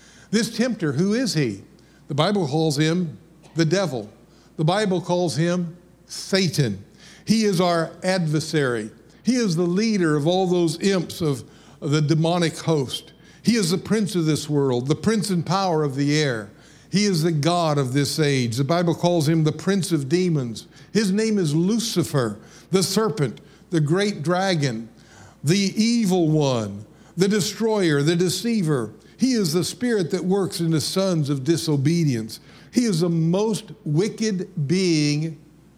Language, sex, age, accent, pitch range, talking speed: English, male, 60-79, American, 145-185 Hz, 160 wpm